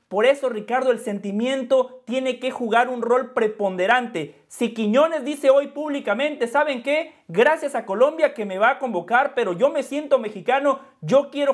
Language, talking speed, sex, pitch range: Spanish, 170 wpm, male, 210-270 Hz